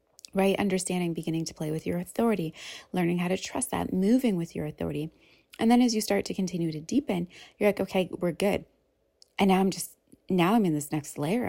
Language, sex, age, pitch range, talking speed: English, female, 30-49, 165-225 Hz, 215 wpm